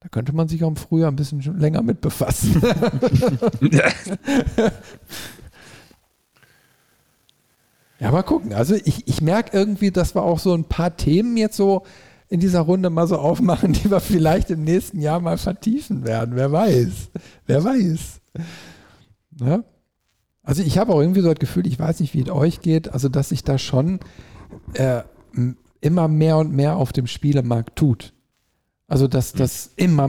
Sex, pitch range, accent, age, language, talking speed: male, 130-165 Hz, German, 50-69, German, 160 wpm